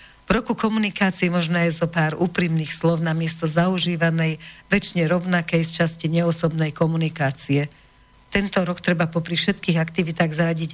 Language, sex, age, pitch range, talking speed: English, female, 50-69, 155-180 Hz, 140 wpm